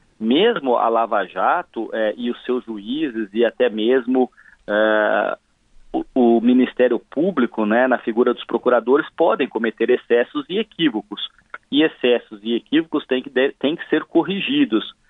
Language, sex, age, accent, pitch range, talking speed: Portuguese, male, 40-59, Brazilian, 120-190 Hz, 145 wpm